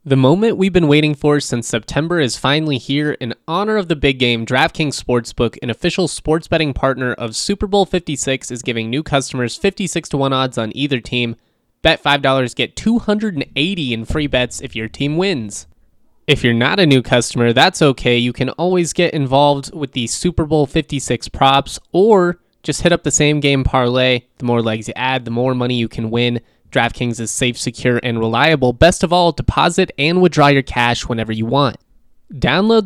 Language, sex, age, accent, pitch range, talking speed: English, male, 20-39, American, 120-155 Hz, 195 wpm